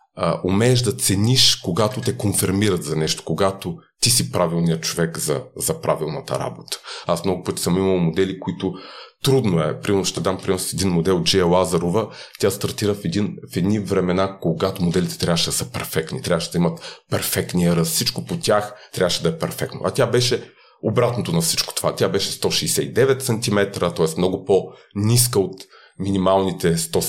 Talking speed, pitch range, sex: 170 wpm, 85-105 Hz, male